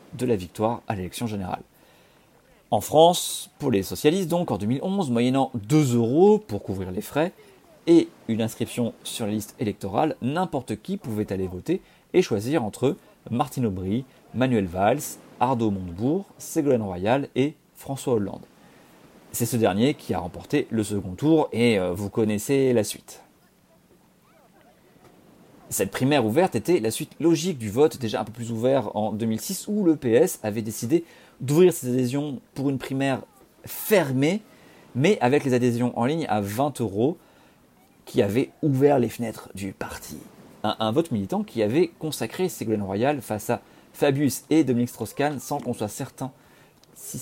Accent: French